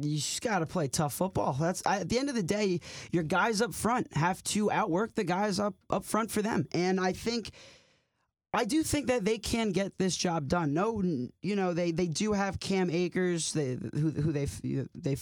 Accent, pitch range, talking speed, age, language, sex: American, 150-190 Hz, 215 wpm, 20-39, English, male